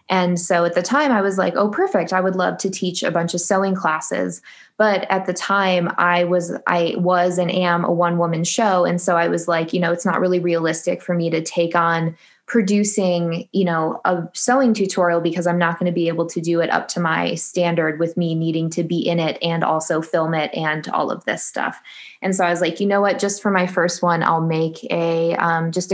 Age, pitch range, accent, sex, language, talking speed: 20-39, 170-185 Hz, American, female, English, 240 wpm